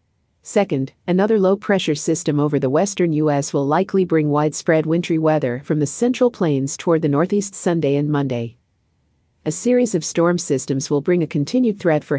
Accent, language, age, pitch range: American, English, 50-69, 145-175 Hz